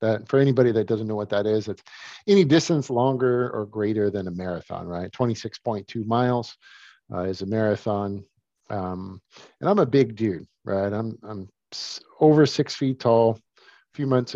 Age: 50-69